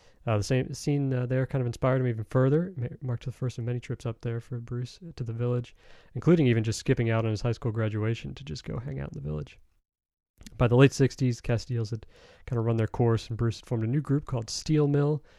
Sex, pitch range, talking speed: male, 115-130 Hz, 250 wpm